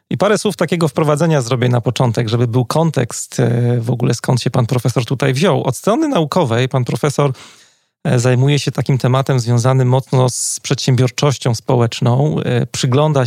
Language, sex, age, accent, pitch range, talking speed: Polish, male, 40-59, native, 125-145 Hz, 155 wpm